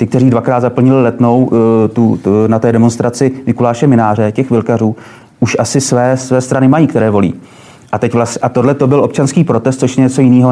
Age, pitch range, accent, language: 30-49, 115-130 Hz, native, Czech